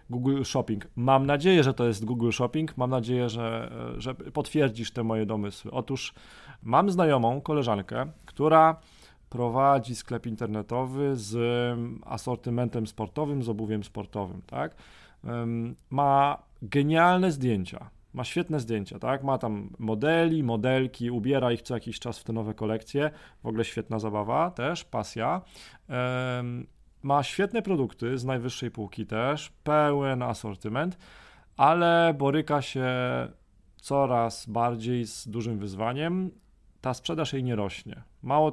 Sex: male